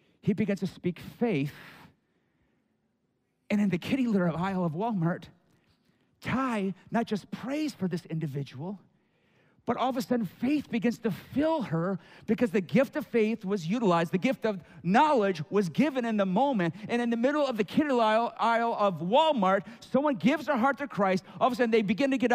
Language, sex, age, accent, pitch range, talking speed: English, male, 50-69, American, 200-260 Hz, 190 wpm